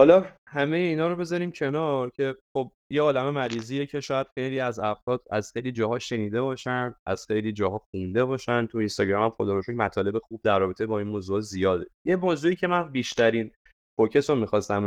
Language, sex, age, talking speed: Persian, male, 20-39, 180 wpm